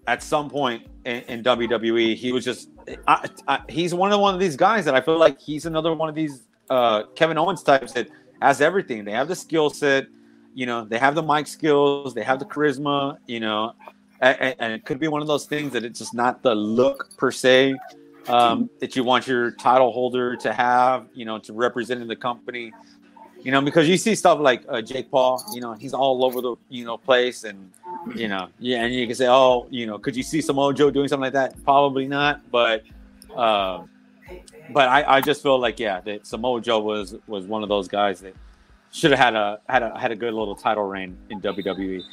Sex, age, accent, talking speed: male, 30-49, American, 225 wpm